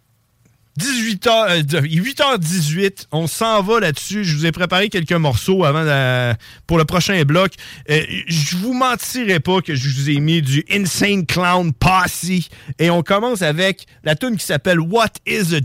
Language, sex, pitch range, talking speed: French, male, 130-190 Hz, 175 wpm